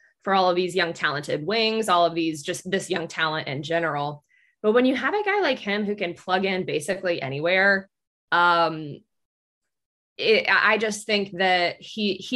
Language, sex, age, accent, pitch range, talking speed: English, female, 20-39, American, 165-195 Hz, 180 wpm